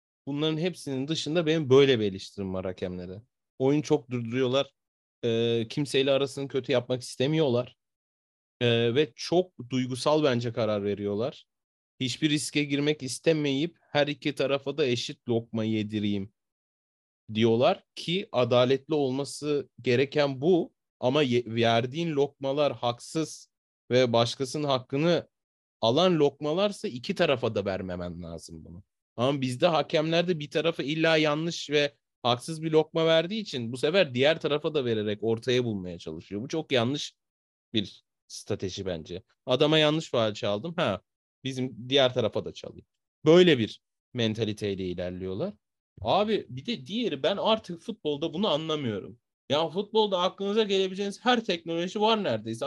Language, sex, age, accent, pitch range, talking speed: Turkish, male, 30-49, native, 115-160 Hz, 130 wpm